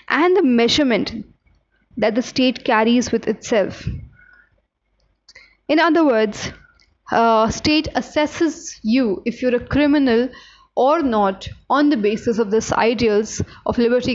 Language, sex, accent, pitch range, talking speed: English, female, Indian, 225-280 Hz, 130 wpm